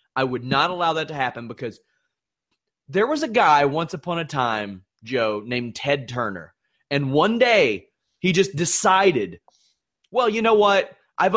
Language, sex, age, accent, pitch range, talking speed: English, male, 30-49, American, 110-155 Hz, 165 wpm